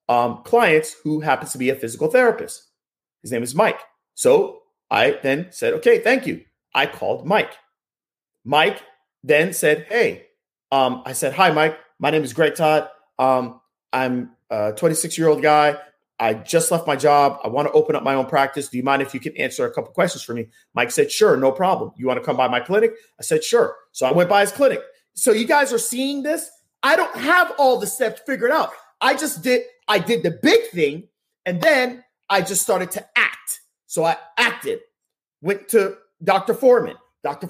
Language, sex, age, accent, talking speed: English, male, 30-49, American, 200 wpm